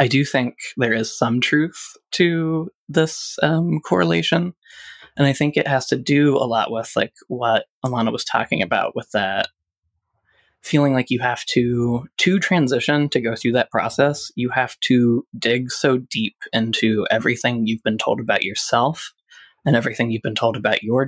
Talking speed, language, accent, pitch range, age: 175 wpm, English, American, 110-135 Hz, 20-39